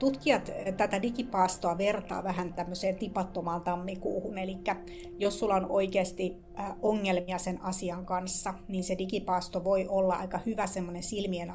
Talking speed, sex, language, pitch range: 130 wpm, female, Finnish, 180-215 Hz